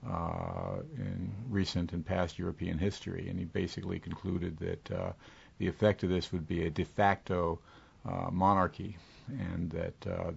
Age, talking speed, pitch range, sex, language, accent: 50-69, 155 wpm, 85-100 Hz, male, English, American